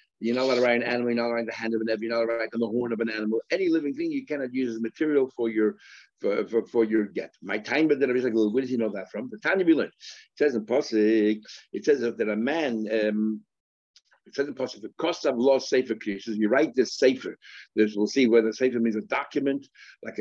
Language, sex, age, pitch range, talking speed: English, male, 60-79, 110-140 Hz, 280 wpm